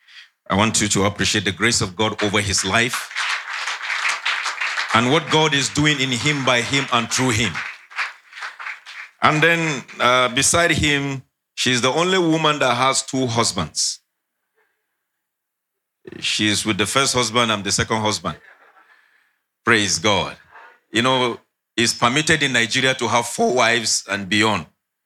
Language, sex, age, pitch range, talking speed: English, male, 40-59, 115-140 Hz, 145 wpm